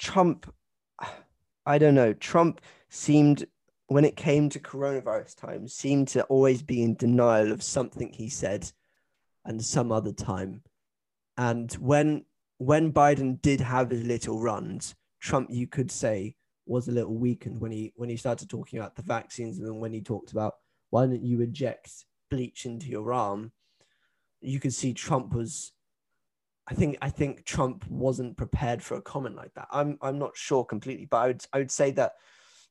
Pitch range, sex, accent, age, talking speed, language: 115-140 Hz, male, British, 20-39, 175 wpm, English